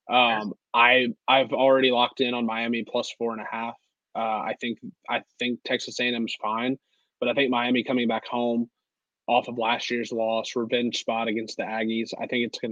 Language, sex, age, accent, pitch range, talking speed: English, male, 20-39, American, 115-130 Hz, 210 wpm